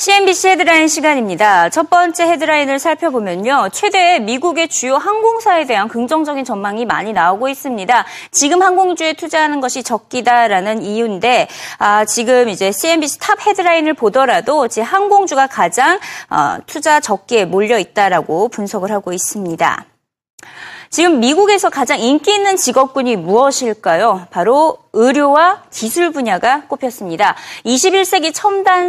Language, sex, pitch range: Korean, female, 220-345 Hz